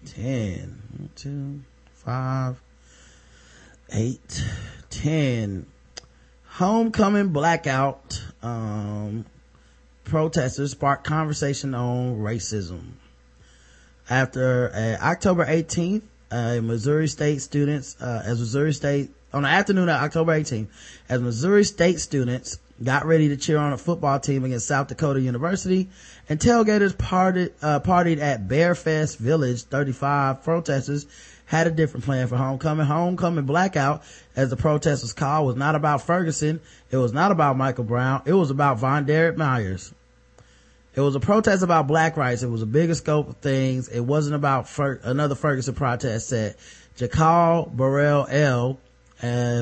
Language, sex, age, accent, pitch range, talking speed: English, male, 30-49, American, 120-155 Hz, 135 wpm